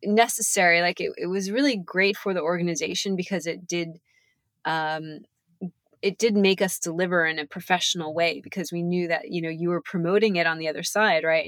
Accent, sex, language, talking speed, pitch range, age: American, female, English, 200 wpm, 160-195 Hz, 20-39